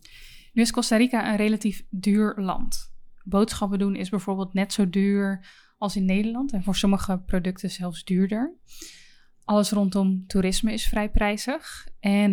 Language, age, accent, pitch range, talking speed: Dutch, 20-39, Dutch, 185-215 Hz, 150 wpm